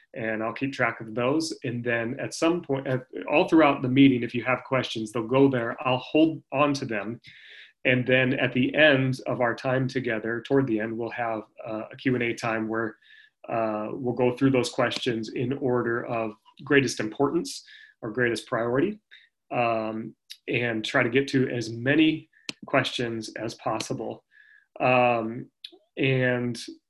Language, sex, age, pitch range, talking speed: English, male, 30-49, 120-150 Hz, 165 wpm